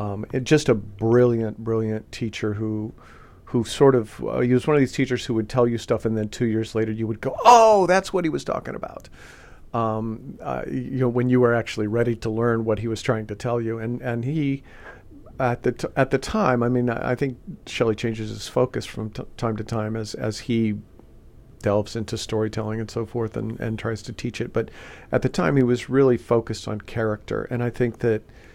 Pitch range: 110-120 Hz